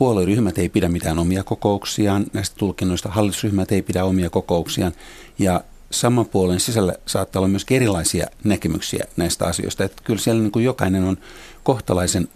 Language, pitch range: Finnish, 95-115 Hz